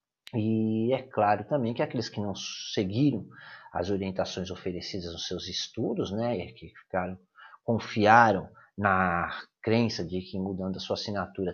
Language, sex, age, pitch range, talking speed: Portuguese, male, 40-59, 95-120 Hz, 135 wpm